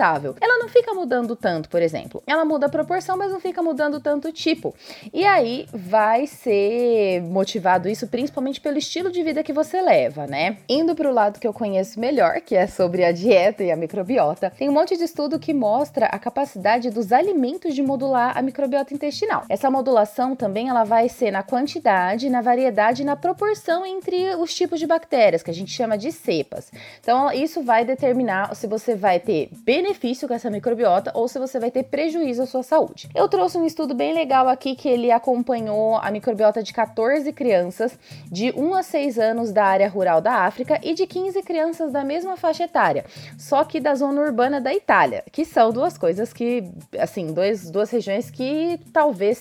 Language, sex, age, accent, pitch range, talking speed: Portuguese, female, 20-39, Brazilian, 215-310 Hz, 195 wpm